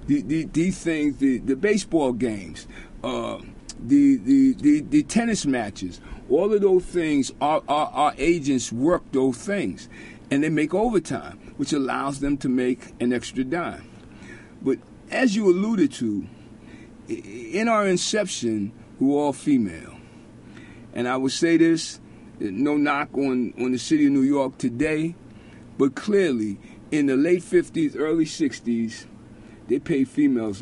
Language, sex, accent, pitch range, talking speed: English, male, American, 130-205 Hz, 150 wpm